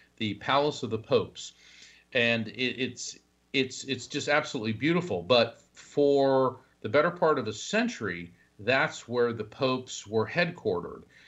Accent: American